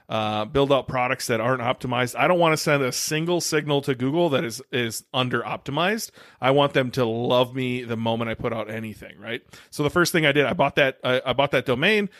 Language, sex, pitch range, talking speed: English, male, 125-145 Hz, 240 wpm